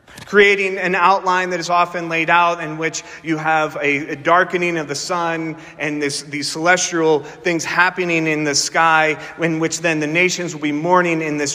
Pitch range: 120-175 Hz